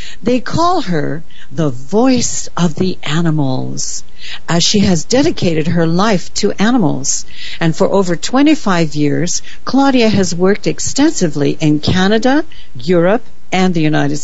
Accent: American